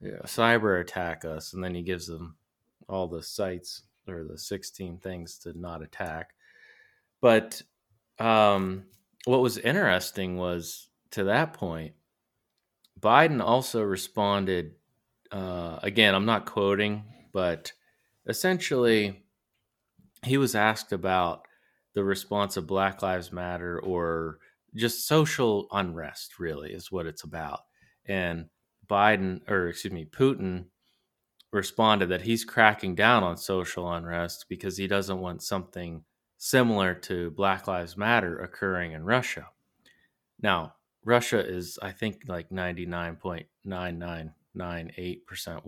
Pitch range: 85-105 Hz